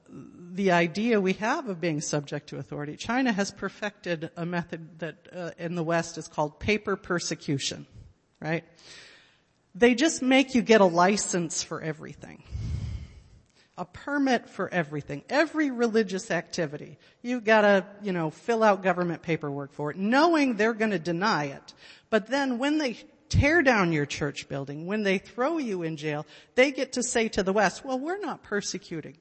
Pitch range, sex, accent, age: 175-280 Hz, female, American, 50-69